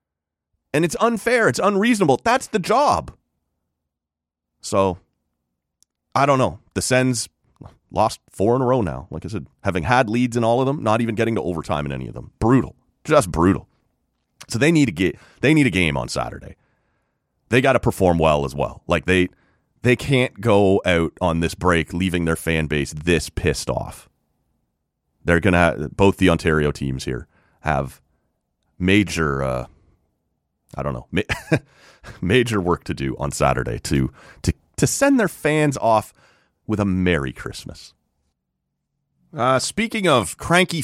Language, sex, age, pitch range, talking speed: English, male, 30-49, 80-130 Hz, 165 wpm